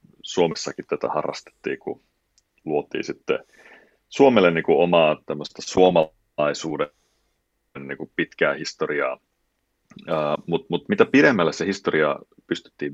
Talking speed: 95 wpm